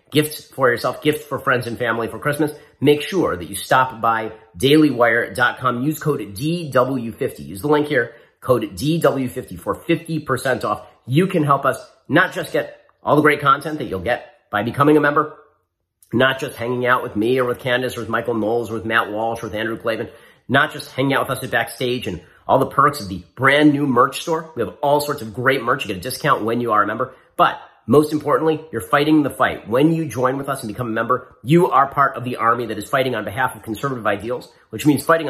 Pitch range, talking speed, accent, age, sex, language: 115-150 Hz, 230 wpm, American, 40-59, male, English